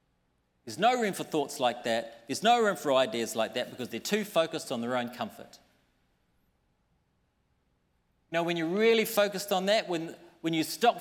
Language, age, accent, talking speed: English, 40-59, Australian, 180 wpm